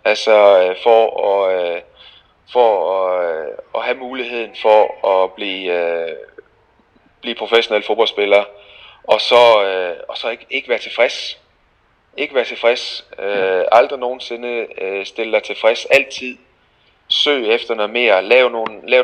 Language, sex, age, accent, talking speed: Danish, male, 30-49, native, 140 wpm